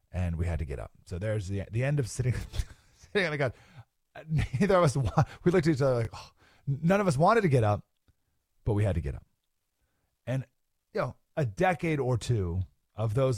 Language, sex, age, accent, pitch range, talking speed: English, male, 40-59, American, 95-140 Hz, 225 wpm